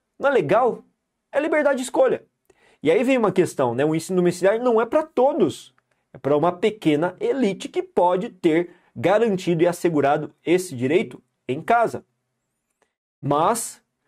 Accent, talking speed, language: Brazilian, 155 wpm, Portuguese